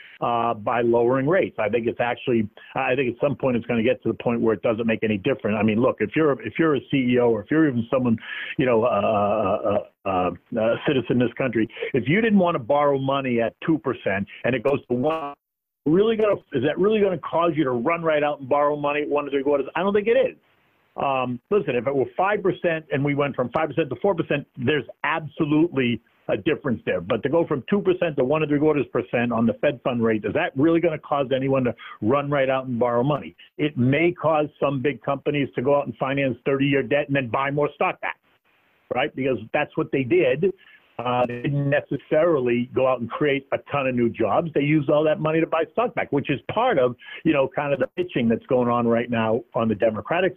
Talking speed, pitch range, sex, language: 250 wpm, 120-155 Hz, male, English